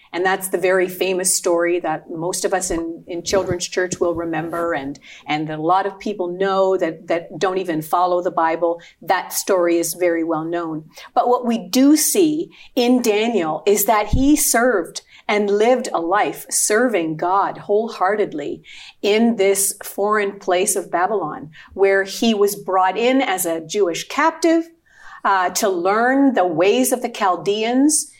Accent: American